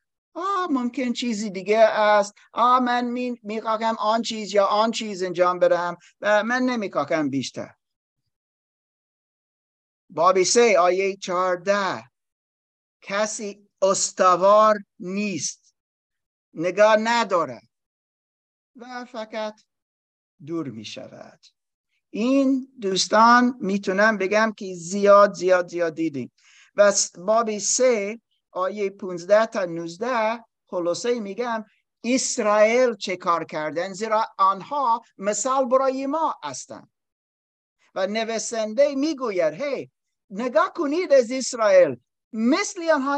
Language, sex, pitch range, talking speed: Persian, male, 190-250 Hz, 100 wpm